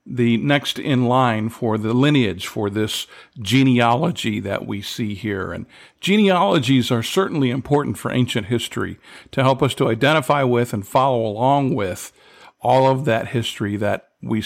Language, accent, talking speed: English, American, 160 wpm